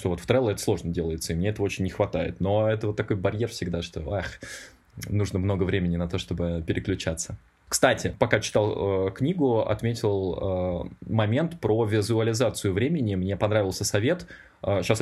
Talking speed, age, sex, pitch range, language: 175 wpm, 20-39, male, 95-115 Hz, English